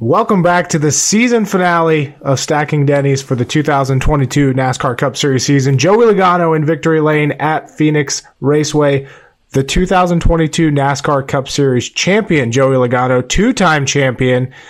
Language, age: English, 30-49